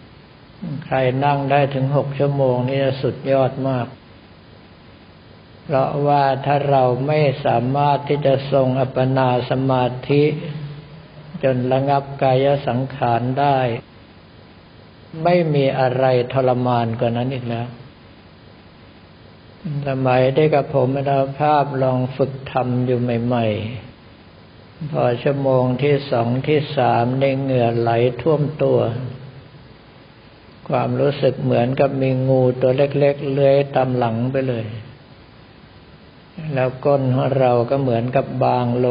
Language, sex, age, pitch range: Thai, male, 60-79, 120-140 Hz